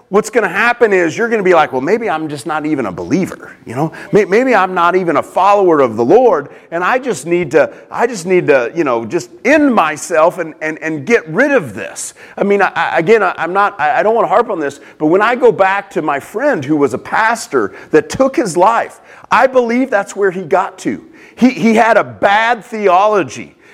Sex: male